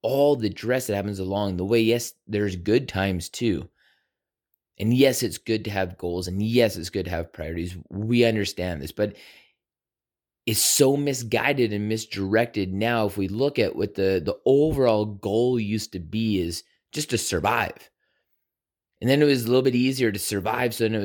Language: English